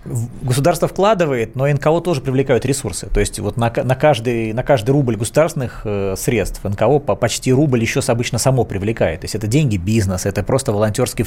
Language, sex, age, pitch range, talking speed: Russian, male, 20-39, 105-135 Hz, 185 wpm